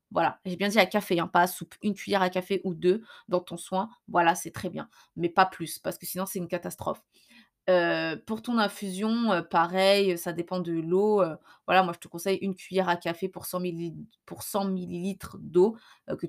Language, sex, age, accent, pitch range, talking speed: French, female, 20-39, French, 180-225 Hz, 210 wpm